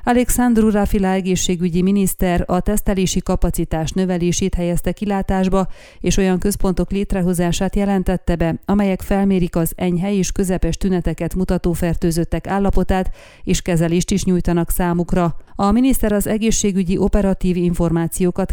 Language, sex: Hungarian, female